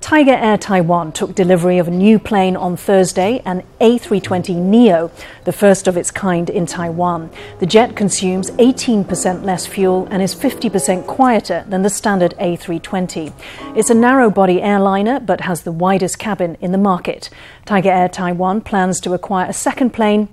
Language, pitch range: English, 180-210 Hz